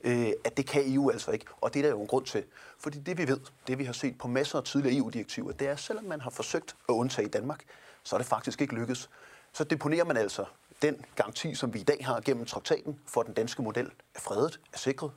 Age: 30-49